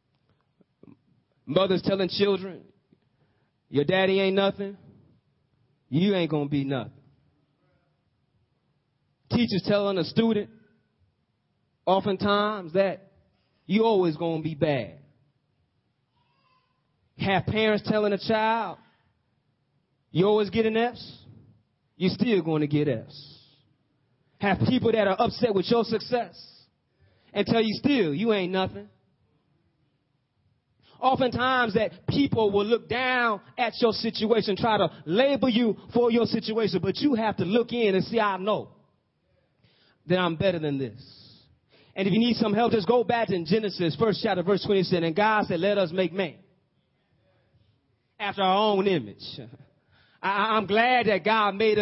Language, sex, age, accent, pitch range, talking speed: English, male, 30-49, American, 145-215 Hz, 135 wpm